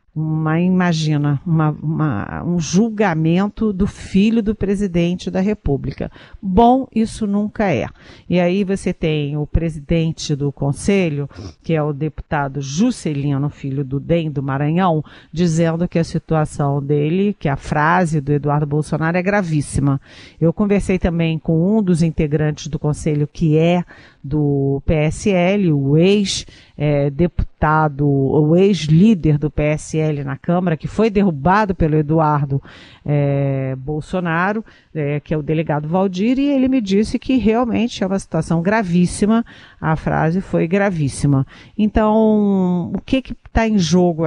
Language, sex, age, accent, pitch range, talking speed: Portuguese, female, 50-69, Brazilian, 150-195 Hz, 135 wpm